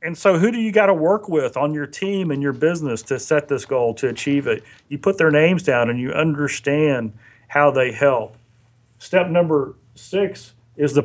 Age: 40-59